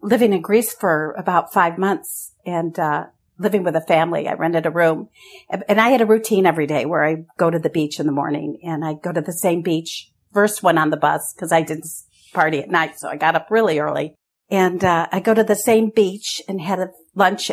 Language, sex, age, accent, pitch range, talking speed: English, female, 50-69, American, 170-215 Hz, 235 wpm